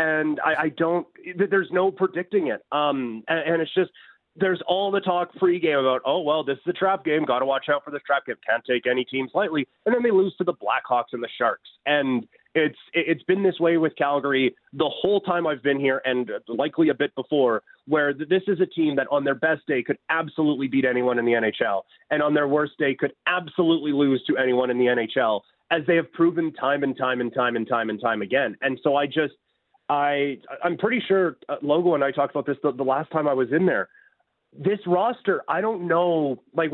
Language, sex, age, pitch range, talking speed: English, male, 30-49, 140-185 Hz, 230 wpm